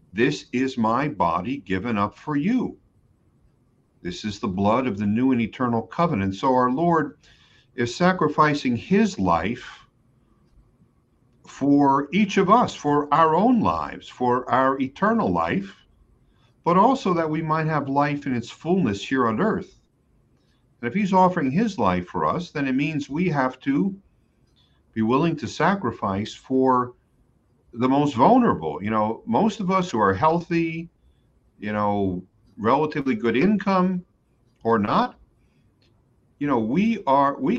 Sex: male